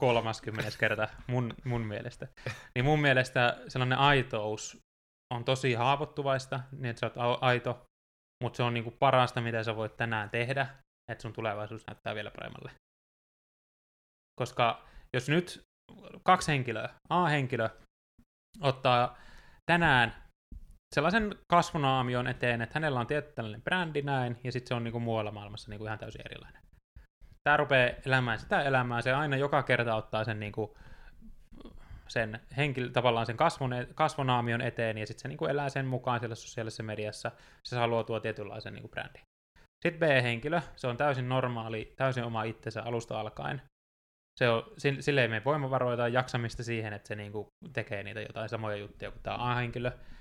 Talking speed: 155 wpm